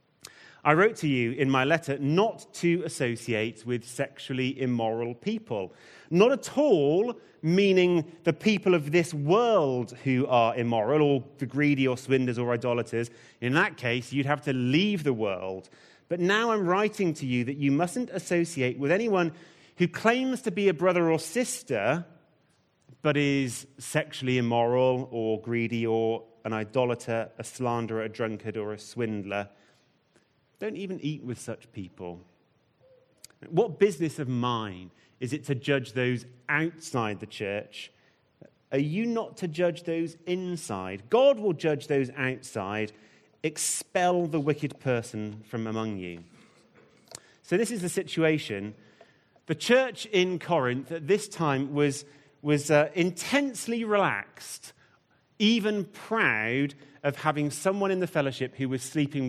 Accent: British